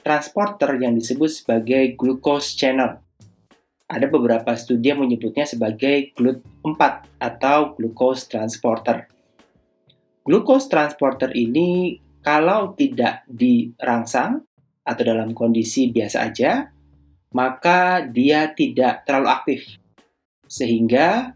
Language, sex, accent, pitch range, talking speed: Indonesian, male, native, 115-155 Hz, 95 wpm